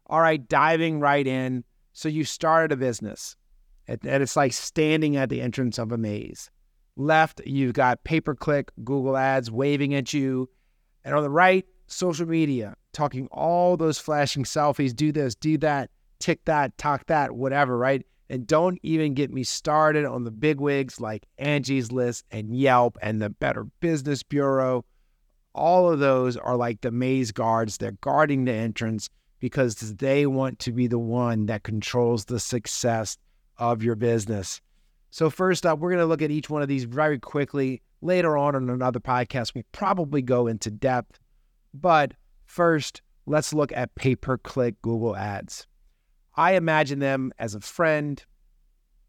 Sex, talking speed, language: male, 165 wpm, English